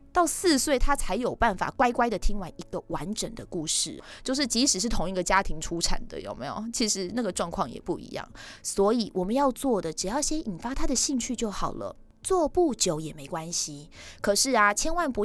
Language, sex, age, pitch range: Chinese, female, 20-39, 190-285 Hz